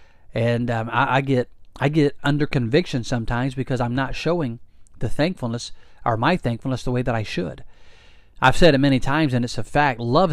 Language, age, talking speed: English, 40-59, 200 wpm